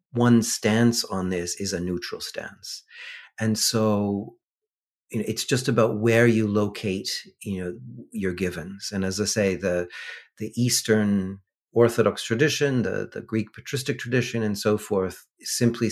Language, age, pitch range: English, 40-59, 95-120 Hz